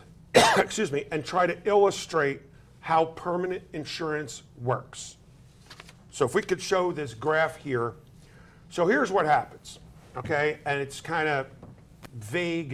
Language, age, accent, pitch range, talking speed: English, 50-69, American, 135-165 Hz, 130 wpm